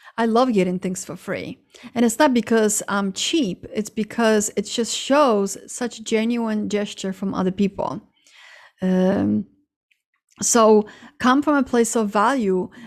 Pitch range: 195-225 Hz